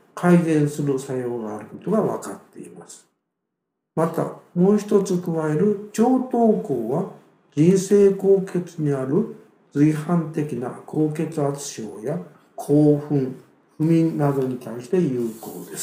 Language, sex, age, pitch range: Japanese, male, 60-79, 145-195 Hz